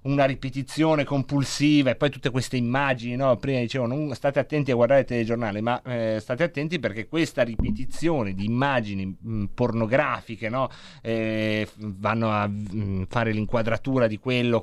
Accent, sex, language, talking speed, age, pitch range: native, male, Italian, 135 wpm, 30-49, 115-155 Hz